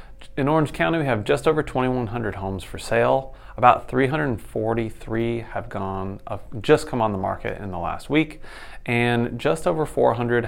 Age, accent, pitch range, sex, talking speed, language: 30-49, American, 105-130 Hz, male, 165 wpm, English